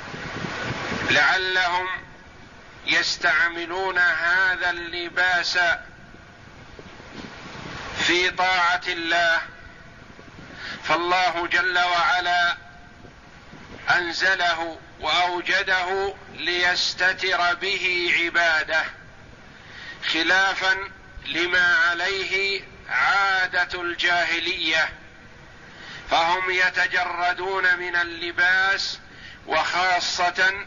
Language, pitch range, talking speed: Arabic, 175-195 Hz, 50 wpm